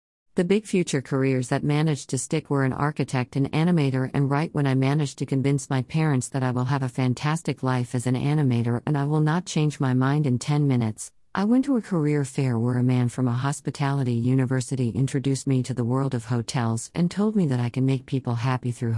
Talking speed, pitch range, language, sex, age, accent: 230 wpm, 125-155 Hz, English, female, 50-69, American